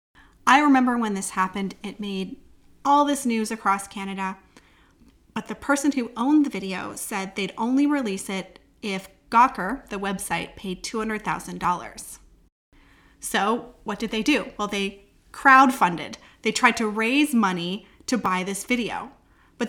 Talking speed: 145 wpm